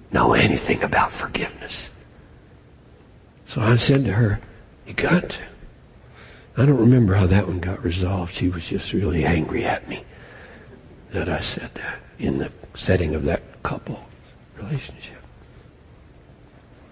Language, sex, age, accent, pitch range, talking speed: English, male, 60-79, American, 95-130 Hz, 135 wpm